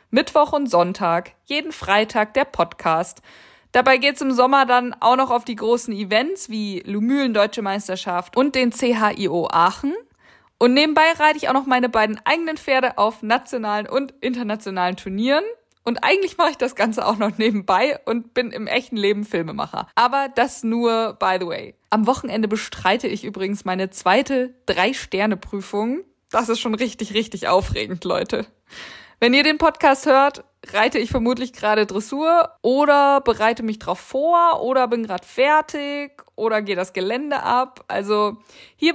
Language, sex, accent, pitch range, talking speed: German, female, German, 215-275 Hz, 160 wpm